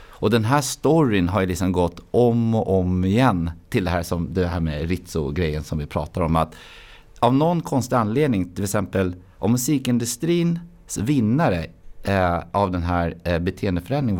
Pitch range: 85-120 Hz